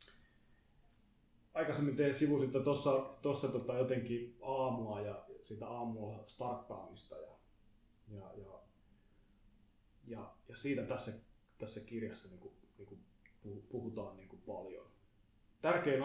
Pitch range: 105-135 Hz